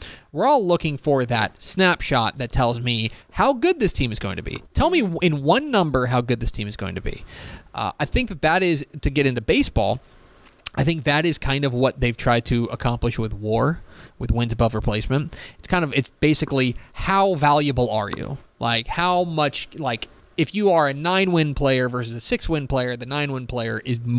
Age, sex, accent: 20-39, male, American